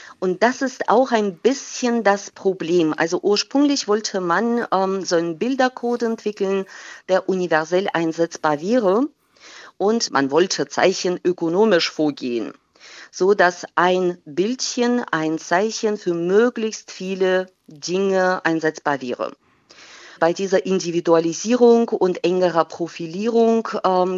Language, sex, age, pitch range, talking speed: German, female, 40-59, 165-210 Hz, 110 wpm